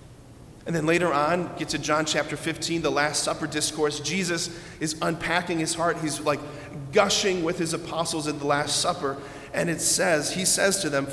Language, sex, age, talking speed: English, male, 40-59, 190 wpm